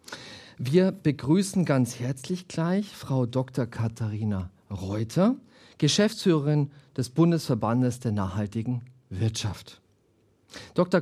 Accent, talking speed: German, 85 wpm